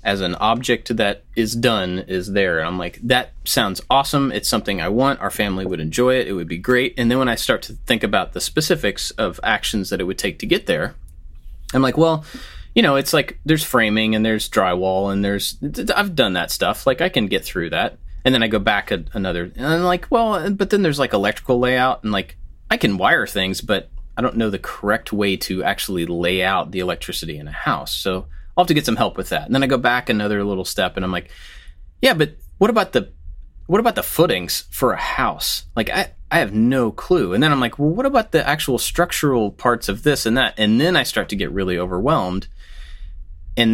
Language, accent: English, American